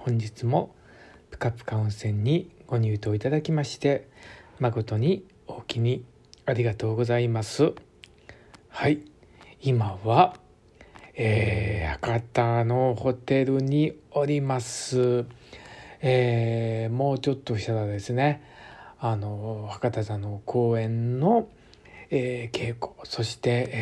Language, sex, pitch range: Japanese, male, 110-130 Hz